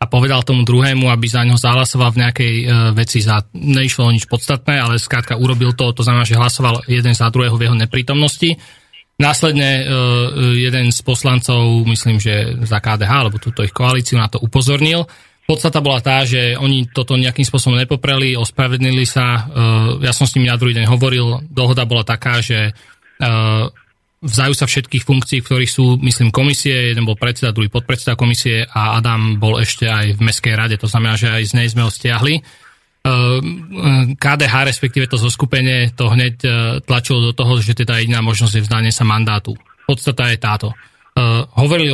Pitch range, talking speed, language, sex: 115-130 Hz, 180 wpm, Slovak, male